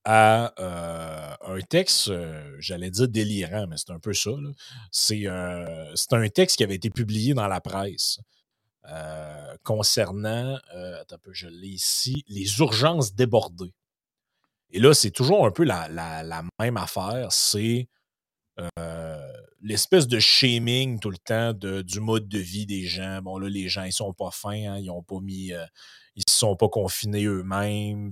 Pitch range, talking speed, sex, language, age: 90-115 Hz, 175 wpm, male, French, 30-49